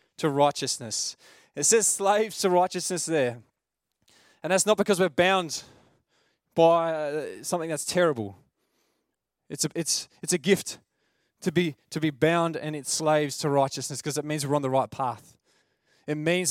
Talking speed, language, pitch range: 160 wpm, English, 145-180 Hz